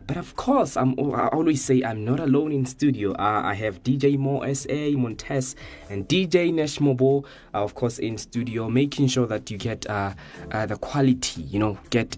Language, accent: English, South African